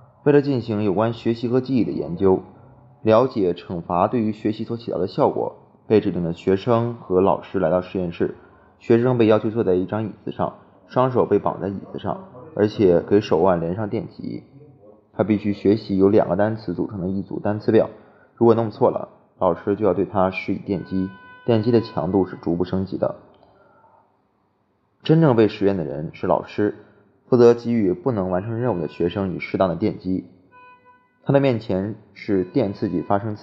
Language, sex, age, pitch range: Chinese, male, 20-39, 95-120 Hz